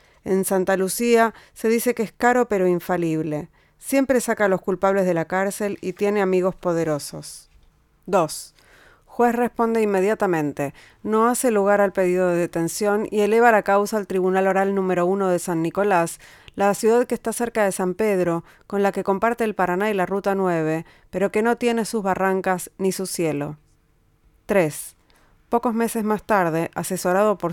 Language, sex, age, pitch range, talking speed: Spanish, female, 30-49, 175-210 Hz, 170 wpm